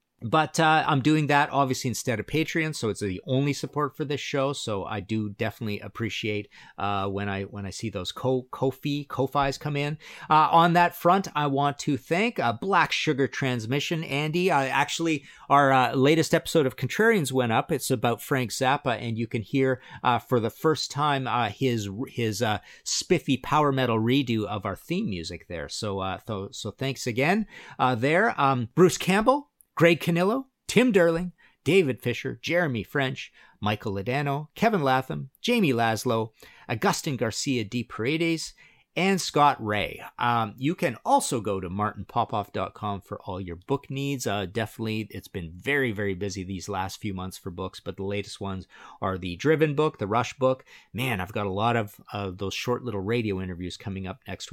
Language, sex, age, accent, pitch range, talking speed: English, male, 40-59, American, 105-145 Hz, 185 wpm